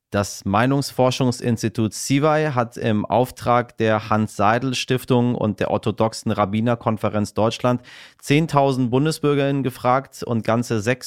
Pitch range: 105-130 Hz